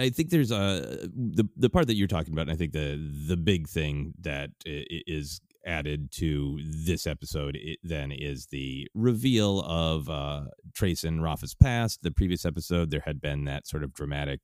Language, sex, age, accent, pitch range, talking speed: English, male, 30-49, American, 75-90 Hz, 185 wpm